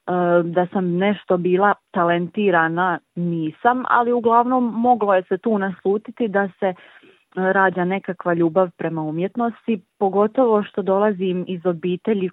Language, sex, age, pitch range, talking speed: Croatian, female, 30-49, 175-205 Hz, 120 wpm